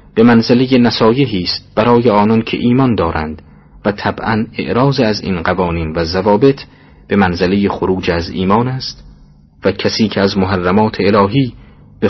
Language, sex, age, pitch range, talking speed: Persian, male, 40-59, 90-115 Hz, 150 wpm